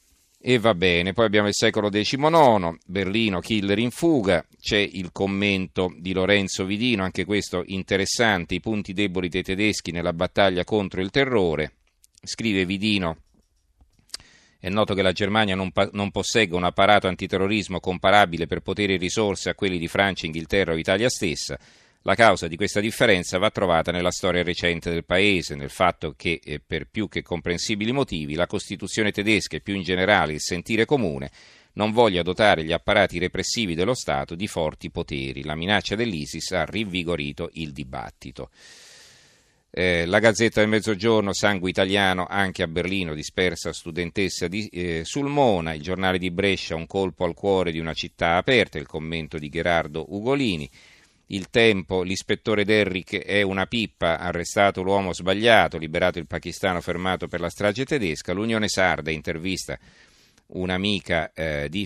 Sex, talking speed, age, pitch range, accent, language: male, 155 wpm, 40-59, 85-105 Hz, native, Italian